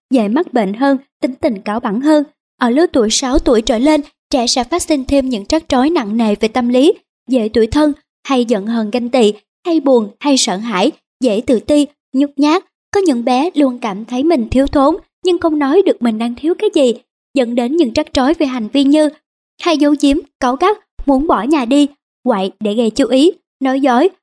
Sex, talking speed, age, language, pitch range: male, 225 wpm, 20-39, Vietnamese, 240-305 Hz